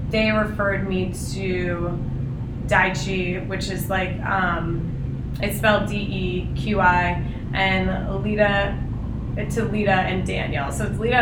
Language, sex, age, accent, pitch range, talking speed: English, female, 20-39, American, 120-195 Hz, 110 wpm